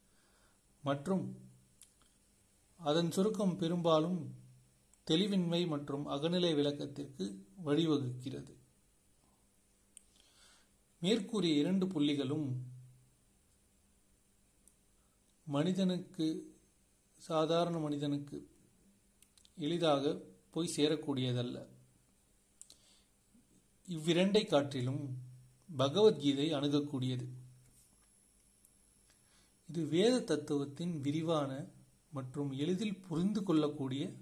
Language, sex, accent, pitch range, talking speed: Tamil, male, native, 100-160 Hz, 50 wpm